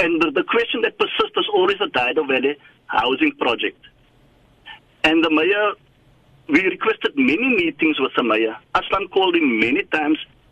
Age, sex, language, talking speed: 60-79, male, English, 155 wpm